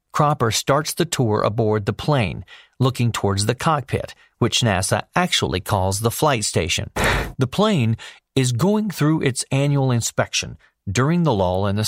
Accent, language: American, English